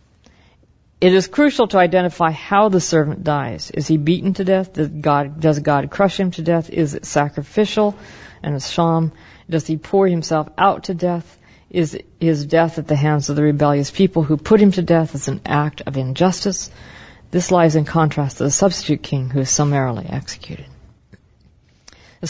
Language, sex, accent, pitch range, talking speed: English, female, American, 145-185 Hz, 185 wpm